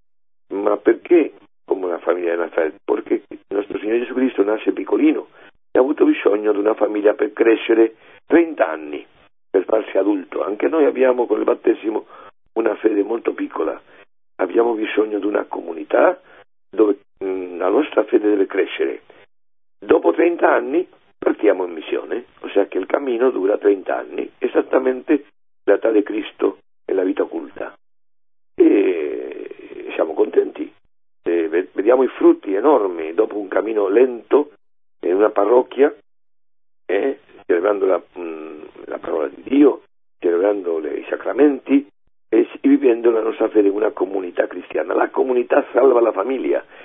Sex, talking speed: male, 145 wpm